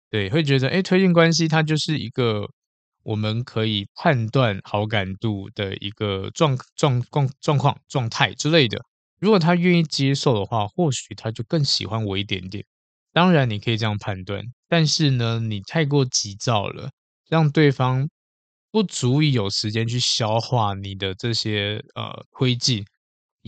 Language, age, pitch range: Chinese, 20-39, 105-145 Hz